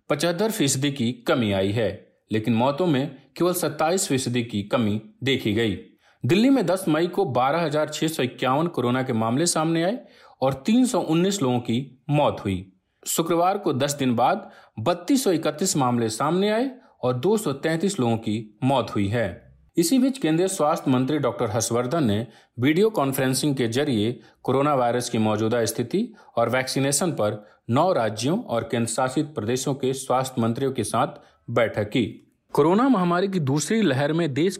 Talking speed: 155 wpm